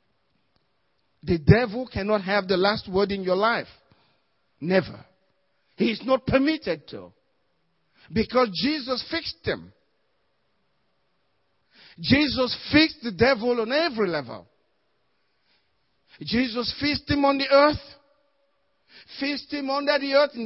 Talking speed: 115 wpm